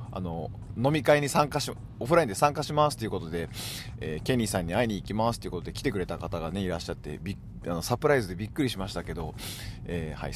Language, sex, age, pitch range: Japanese, male, 40-59, 95-130 Hz